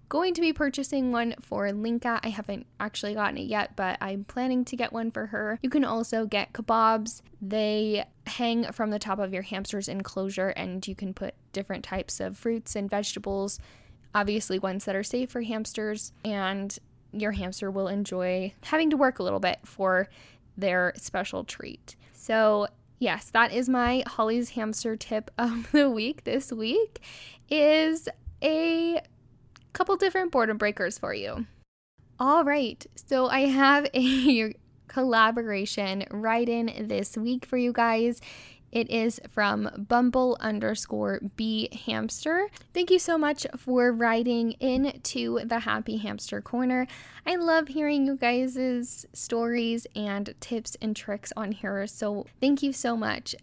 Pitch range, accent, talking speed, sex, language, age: 205-255 Hz, American, 155 wpm, female, English, 10-29